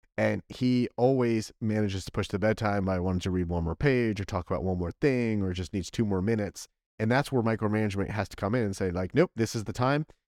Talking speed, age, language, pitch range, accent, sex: 250 wpm, 30-49, English, 95-120 Hz, American, male